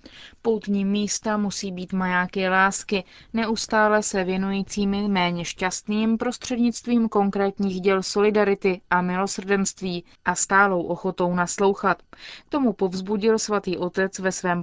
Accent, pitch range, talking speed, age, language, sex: native, 180-215 Hz, 110 wpm, 30-49, Czech, female